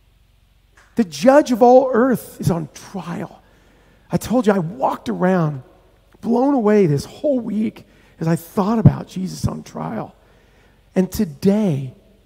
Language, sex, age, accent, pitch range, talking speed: English, male, 40-59, American, 155-245 Hz, 135 wpm